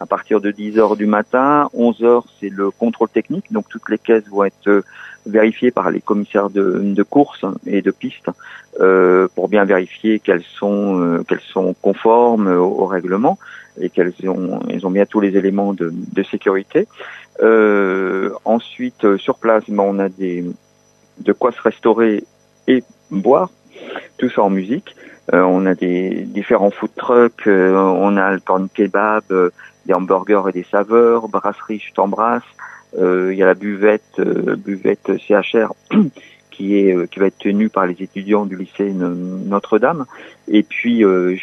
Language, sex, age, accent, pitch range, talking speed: French, male, 50-69, French, 95-115 Hz, 170 wpm